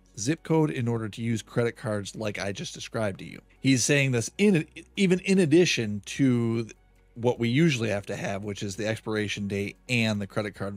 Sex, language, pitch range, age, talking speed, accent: male, English, 105-135 Hz, 40-59, 205 wpm, American